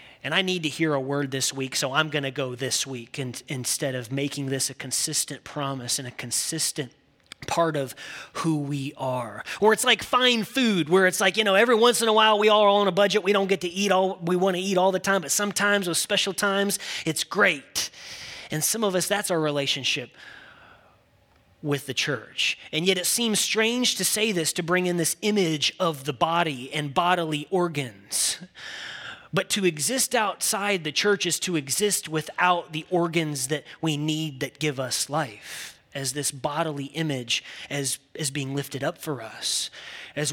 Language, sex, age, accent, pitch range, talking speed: English, male, 30-49, American, 140-185 Hz, 200 wpm